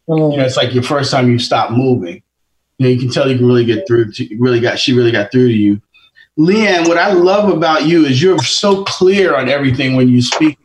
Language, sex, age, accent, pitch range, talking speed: English, male, 30-49, American, 130-165 Hz, 250 wpm